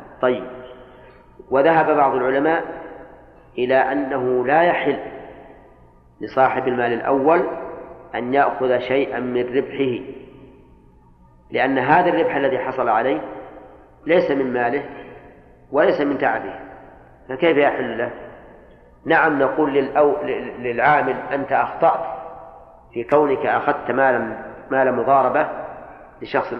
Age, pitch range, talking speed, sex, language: 40-59, 125-155 Hz, 95 wpm, male, Arabic